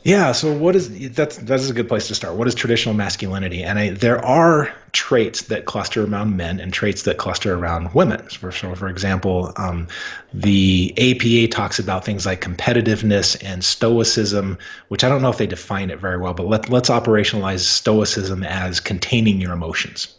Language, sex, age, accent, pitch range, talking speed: English, male, 30-49, American, 95-120 Hz, 190 wpm